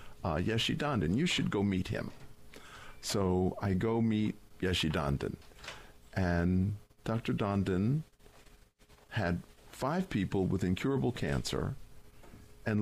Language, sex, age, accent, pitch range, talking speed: English, male, 50-69, American, 80-100 Hz, 115 wpm